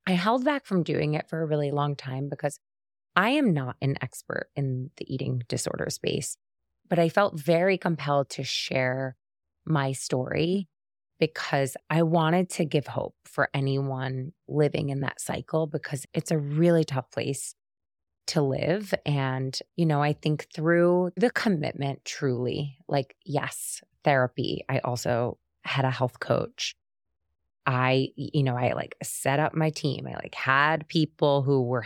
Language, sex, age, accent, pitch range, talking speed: English, female, 20-39, American, 130-160 Hz, 160 wpm